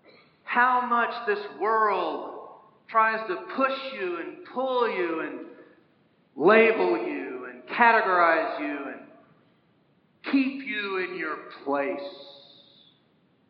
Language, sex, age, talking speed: English, male, 50-69, 100 wpm